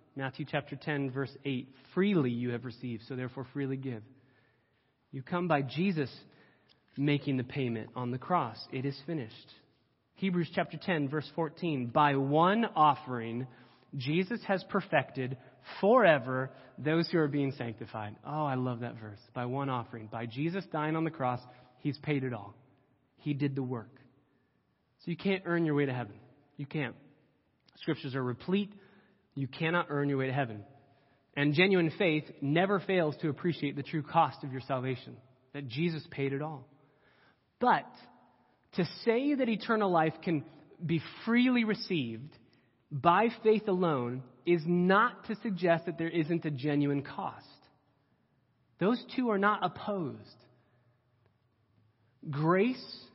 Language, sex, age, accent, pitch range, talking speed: English, male, 30-49, American, 125-165 Hz, 150 wpm